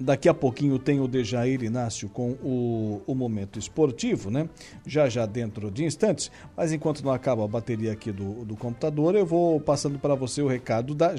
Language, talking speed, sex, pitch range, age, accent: Portuguese, 195 wpm, male, 135-175 Hz, 60-79, Brazilian